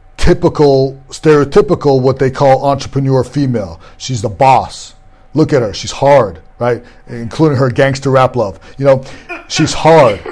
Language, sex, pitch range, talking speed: English, male, 135-165 Hz, 145 wpm